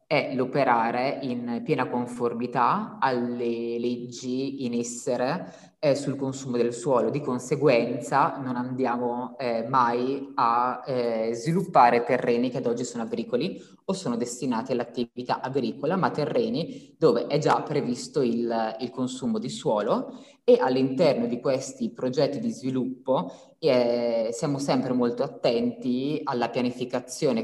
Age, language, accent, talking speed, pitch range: 20-39, Italian, native, 130 wpm, 120-135 Hz